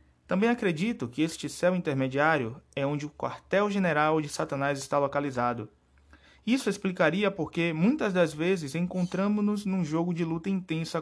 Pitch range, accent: 115-185 Hz, Brazilian